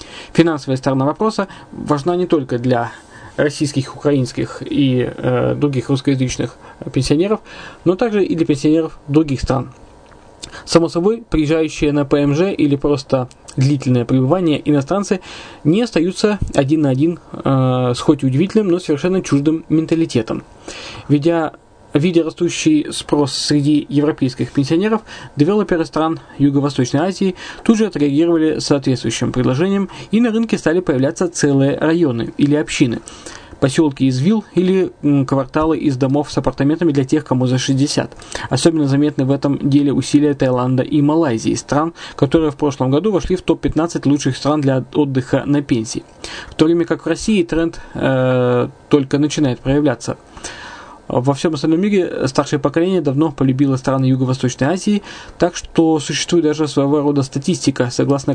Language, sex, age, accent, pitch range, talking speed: Russian, male, 20-39, native, 135-165 Hz, 140 wpm